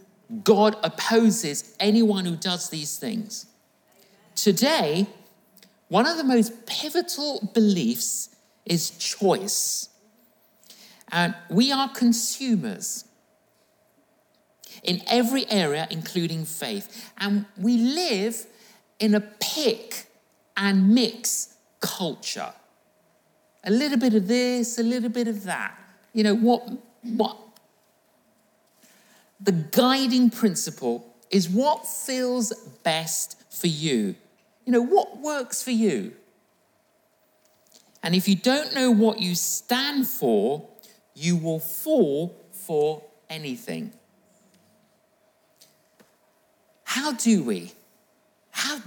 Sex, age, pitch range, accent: male, 50-69, 195-235 Hz, British